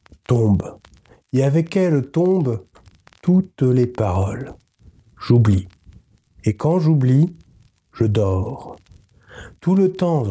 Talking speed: 100 wpm